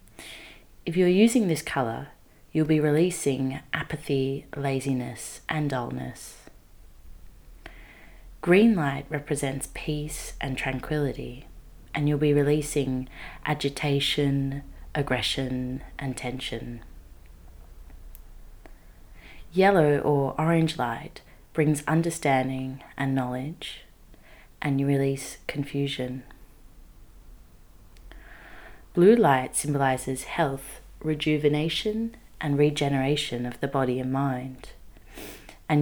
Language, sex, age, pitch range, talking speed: English, female, 30-49, 130-150 Hz, 85 wpm